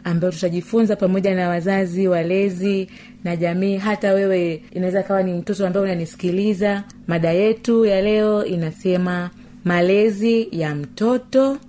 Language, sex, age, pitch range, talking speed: Swahili, female, 30-49, 165-225 Hz, 125 wpm